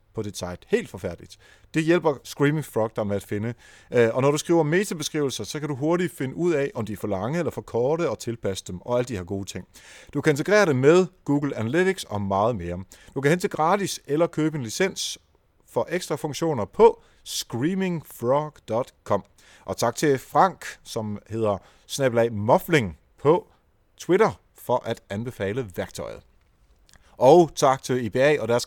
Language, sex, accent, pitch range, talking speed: Danish, male, native, 105-155 Hz, 180 wpm